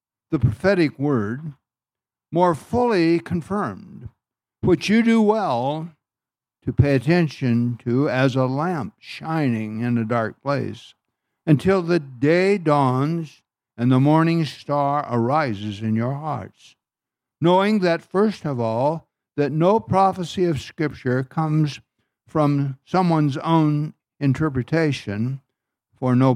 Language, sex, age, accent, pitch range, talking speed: English, male, 60-79, American, 120-160 Hz, 115 wpm